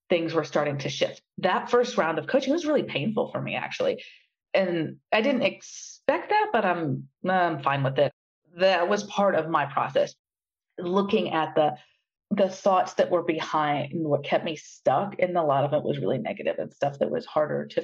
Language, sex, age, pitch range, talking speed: English, female, 40-59, 170-235 Hz, 200 wpm